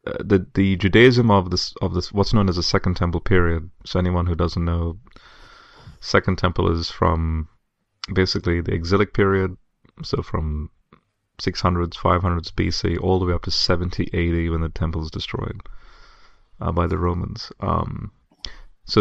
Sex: male